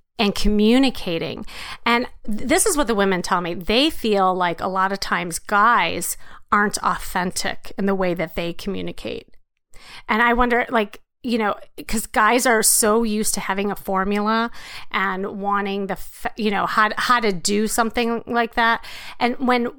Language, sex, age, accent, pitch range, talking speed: English, female, 30-49, American, 195-245 Hz, 175 wpm